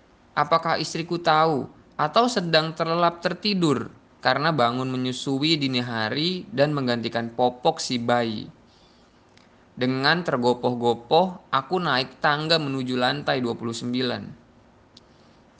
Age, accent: 20-39, native